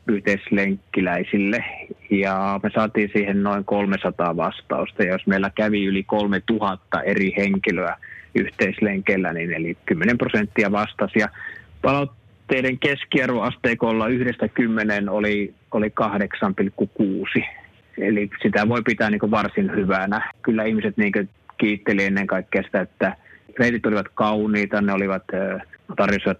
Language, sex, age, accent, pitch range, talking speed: Finnish, male, 20-39, native, 100-115 Hz, 115 wpm